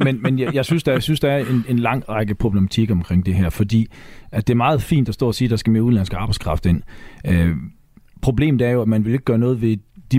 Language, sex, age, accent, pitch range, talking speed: Danish, male, 40-59, native, 105-135 Hz, 275 wpm